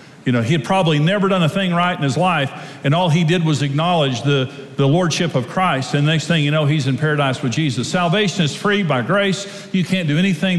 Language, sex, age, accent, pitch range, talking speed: English, male, 50-69, American, 155-190 Hz, 250 wpm